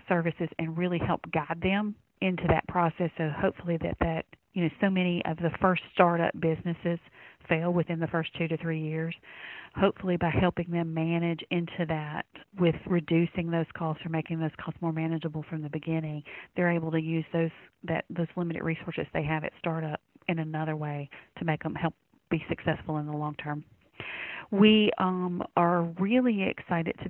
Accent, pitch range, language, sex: American, 160-175 Hz, English, female